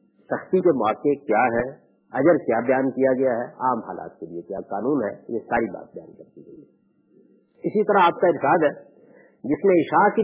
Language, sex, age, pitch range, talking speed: Urdu, male, 50-69, 125-185 Hz, 200 wpm